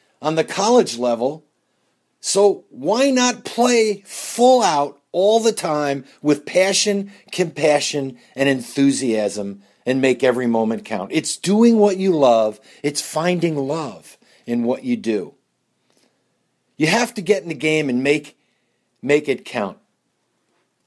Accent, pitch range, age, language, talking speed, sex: American, 130-195 Hz, 50-69, English, 135 wpm, male